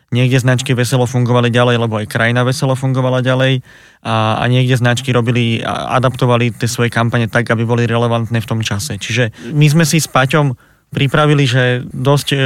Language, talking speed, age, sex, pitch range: Slovak, 180 wpm, 20-39, male, 120-130 Hz